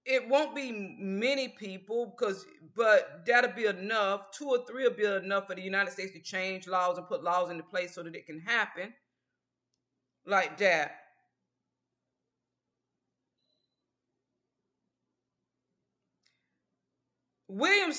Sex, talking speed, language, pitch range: female, 120 wpm, English, 185-245 Hz